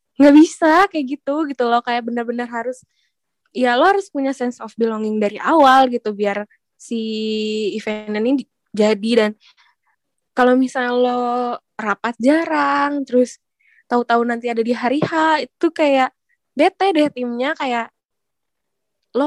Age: 10-29